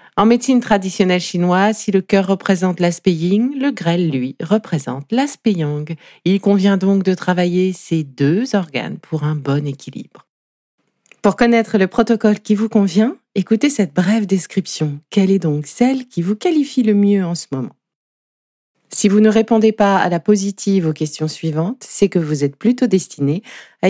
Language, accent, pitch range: French, French, 170-215 Hz